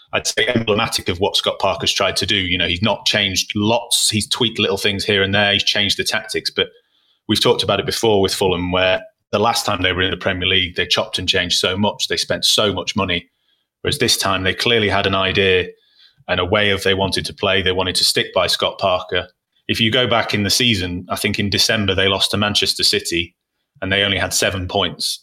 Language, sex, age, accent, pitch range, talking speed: English, male, 30-49, British, 95-105 Hz, 240 wpm